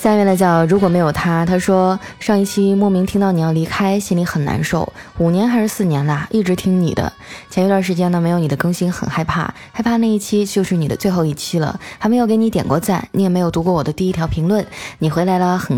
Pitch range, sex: 165-220 Hz, female